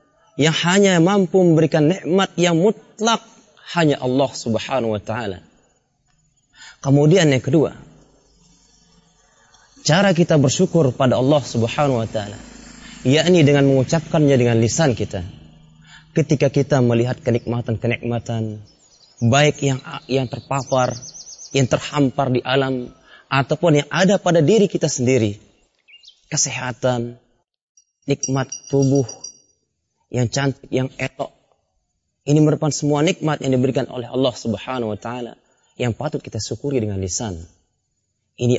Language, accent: Indonesian, native